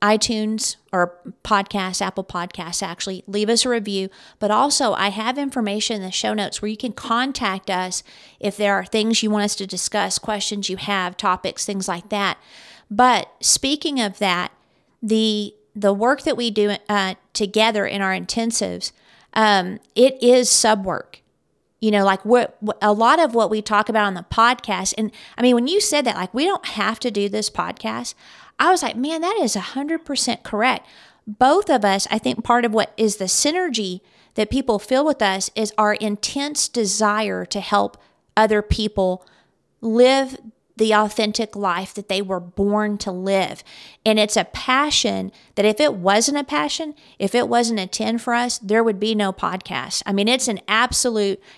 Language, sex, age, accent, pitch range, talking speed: English, female, 40-59, American, 200-240 Hz, 185 wpm